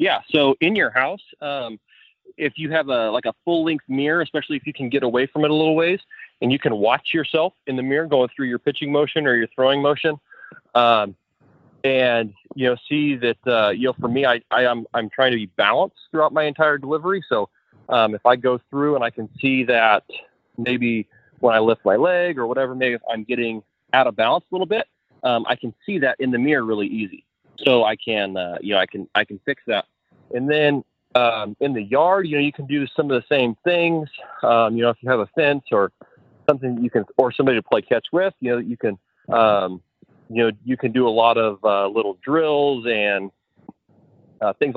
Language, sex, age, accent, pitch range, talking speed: English, male, 20-39, American, 120-150 Hz, 230 wpm